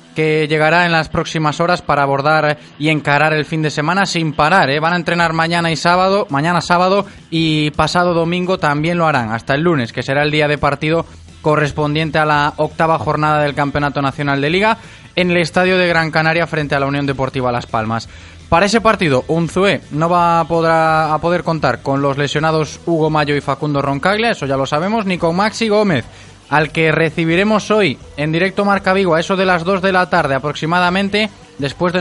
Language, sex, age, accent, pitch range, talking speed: Spanish, male, 20-39, Spanish, 145-175 Hz, 200 wpm